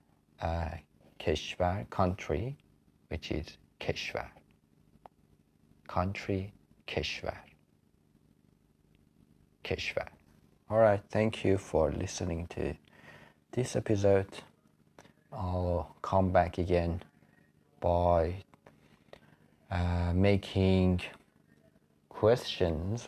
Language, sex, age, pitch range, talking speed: Persian, male, 30-49, 75-95 Hz, 70 wpm